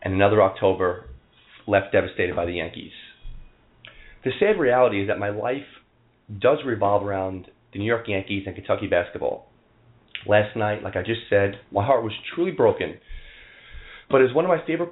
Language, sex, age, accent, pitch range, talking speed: English, male, 30-49, American, 100-125 Hz, 170 wpm